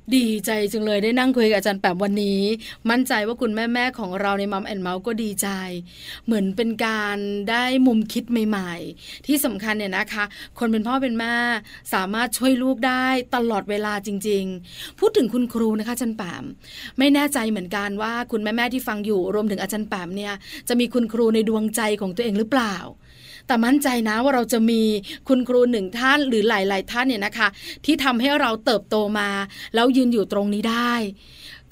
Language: Thai